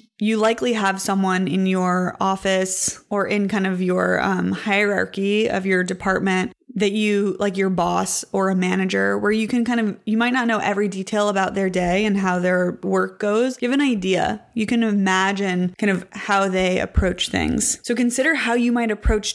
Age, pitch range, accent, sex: 20-39, 190-225 Hz, American, female